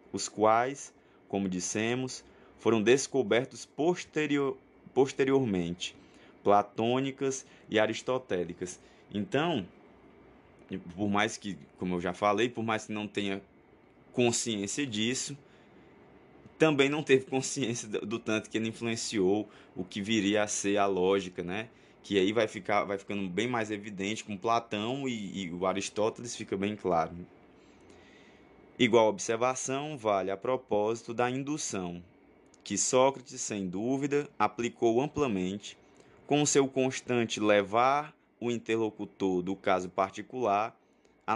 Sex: male